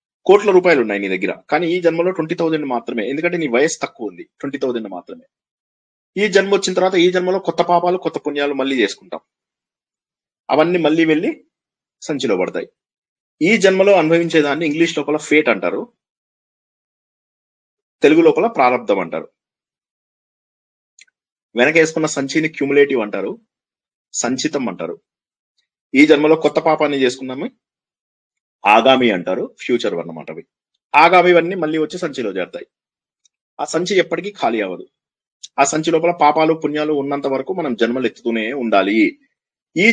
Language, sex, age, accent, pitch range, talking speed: Telugu, male, 30-49, native, 145-185 Hz, 130 wpm